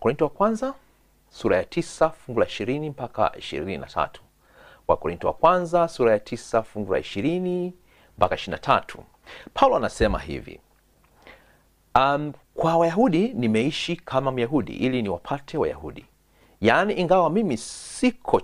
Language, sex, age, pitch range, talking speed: Swahili, male, 40-59, 125-180 Hz, 130 wpm